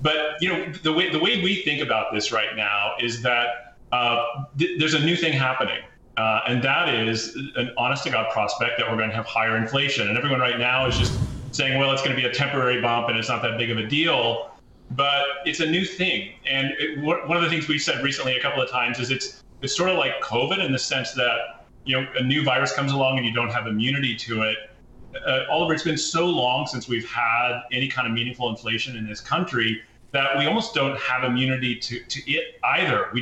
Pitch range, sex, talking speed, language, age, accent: 120-145 Hz, male, 235 wpm, English, 30-49, American